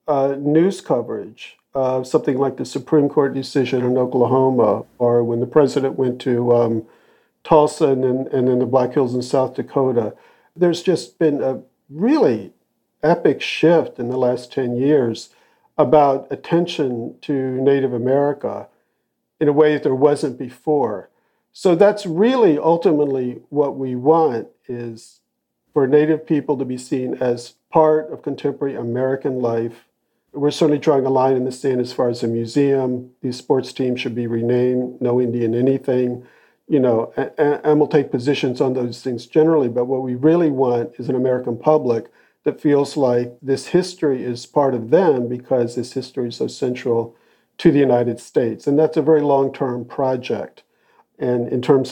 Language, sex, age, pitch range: English, male, 50-69, 125-145 Hz